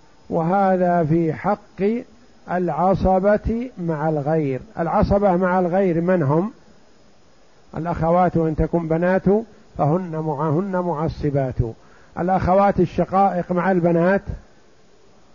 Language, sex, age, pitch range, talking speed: Arabic, male, 50-69, 165-200 Hz, 85 wpm